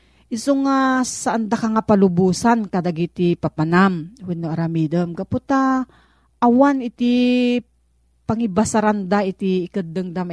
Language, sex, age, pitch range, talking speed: Filipino, female, 40-59, 165-230 Hz, 110 wpm